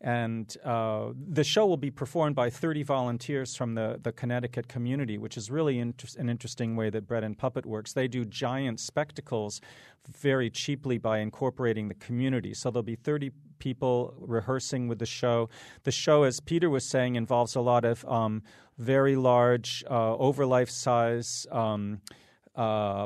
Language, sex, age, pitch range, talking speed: English, male, 40-59, 115-130 Hz, 165 wpm